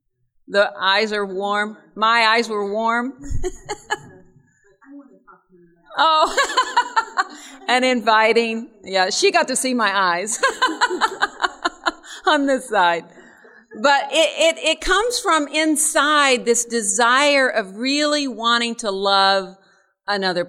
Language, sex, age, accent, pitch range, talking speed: English, female, 50-69, American, 200-290 Hz, 105 wpm